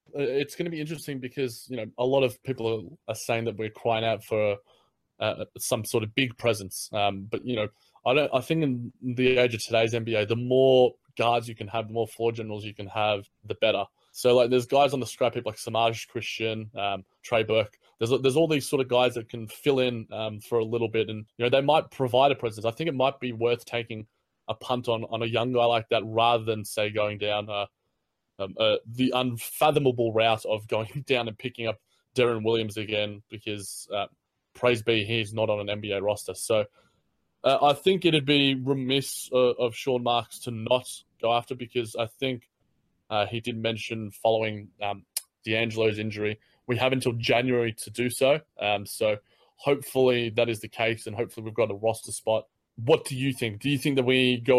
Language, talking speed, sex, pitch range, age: English, 215 wpm, male, 110-125 Hz, 20-39